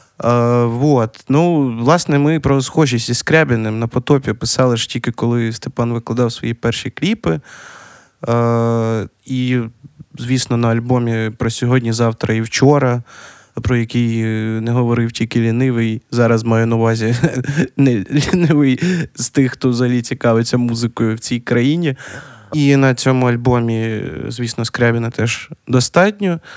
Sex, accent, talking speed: male, native, 135 wpm